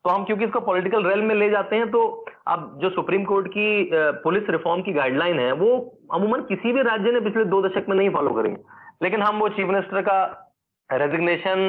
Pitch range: 175-220 Hz